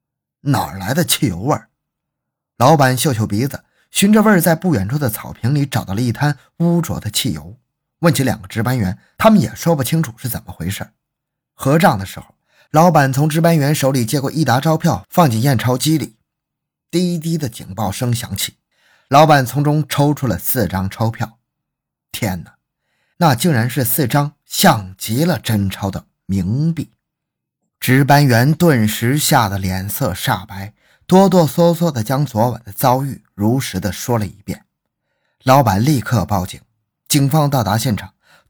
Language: Chinese